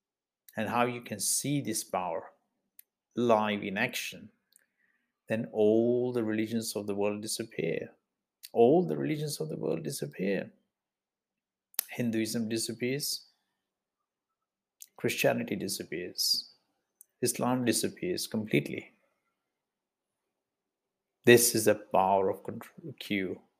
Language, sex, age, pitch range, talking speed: English, male, 50-69, 100-115 Hz, 95 wpm